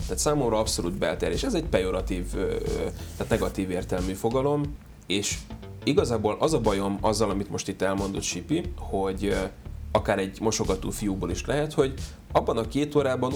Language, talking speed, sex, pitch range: Hungarian, 155 wpm, male, 95-115 Hz